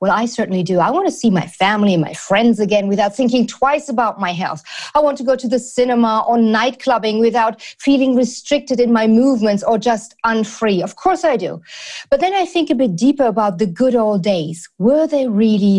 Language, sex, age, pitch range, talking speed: English, female, 40-59, 210-265 Hz, 215 wpm